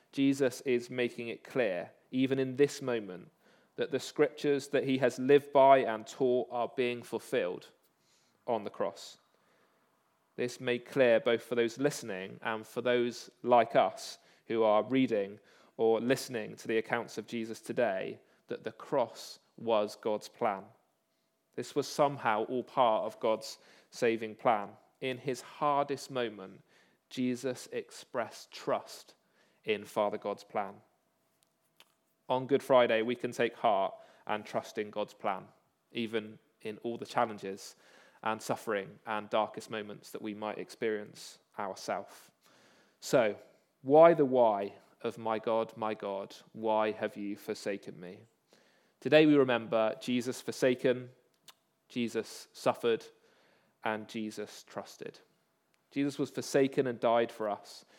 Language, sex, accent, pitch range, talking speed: English, male, British, 110-135 Hz, 135 wpm